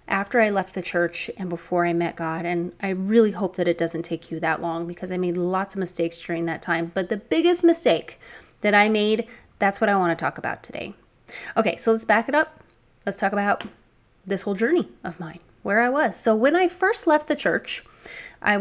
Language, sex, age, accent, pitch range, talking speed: English, female, 30-49, American, 175-225 Hz, 225 wpm